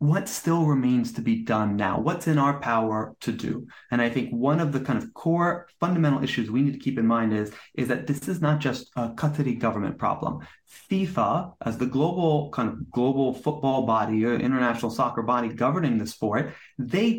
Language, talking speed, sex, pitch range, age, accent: English, 200 wpm, male, 120-155 Hz, 30-49, American